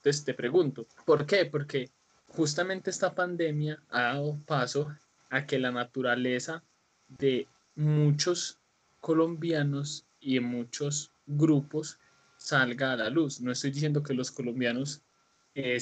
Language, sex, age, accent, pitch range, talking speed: Spanish, male, 20-39, Colombian, 130-160 Hz, 130 wpm